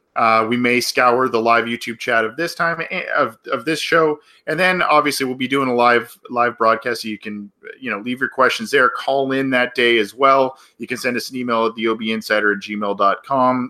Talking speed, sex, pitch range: 220 wpm, male, 110-135 Hz